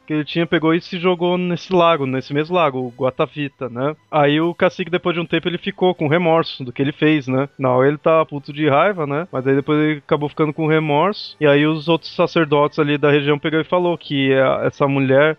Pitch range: 135-155 Hz